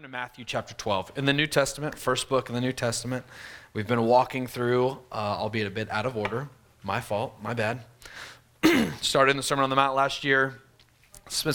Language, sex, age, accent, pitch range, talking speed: English, male, 30-49, American, 115-145 Hz, 205 wpm